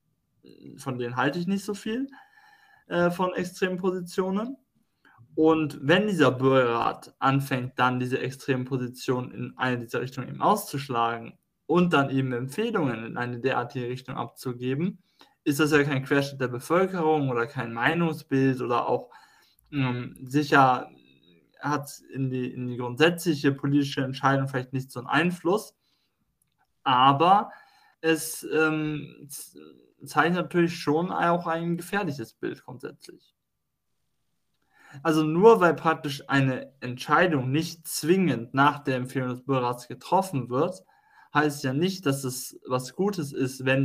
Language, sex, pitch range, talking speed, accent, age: German, male, 130-160 Hz, 135 wpm, German, 20-39